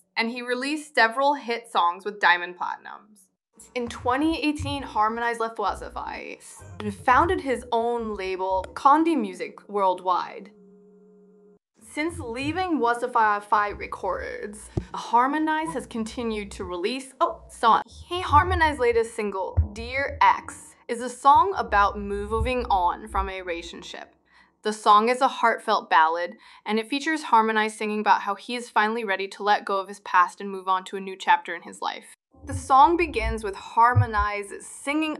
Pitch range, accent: 190-255 Hz, American